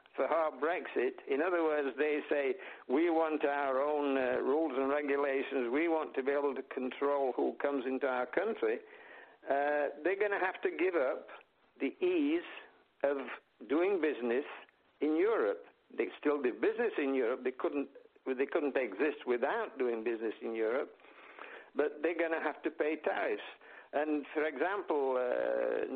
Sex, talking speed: male, 160 wpm